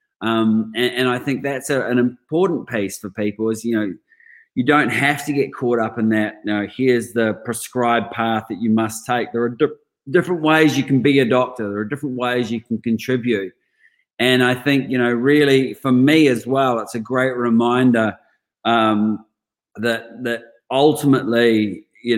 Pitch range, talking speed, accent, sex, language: 110-130 Hz, 190 wpm, Australian, male, English